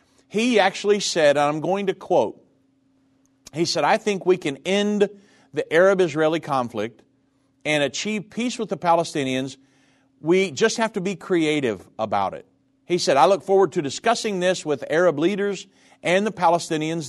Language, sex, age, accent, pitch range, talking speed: English, male, 50-69, American, 135-185 Hz, 160 wpm